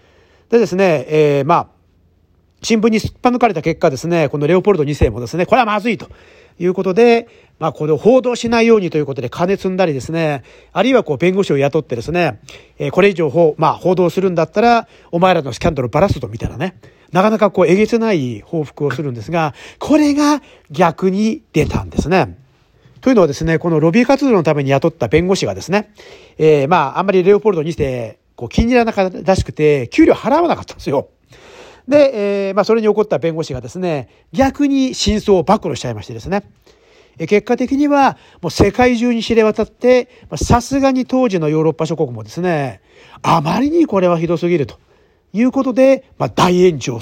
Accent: native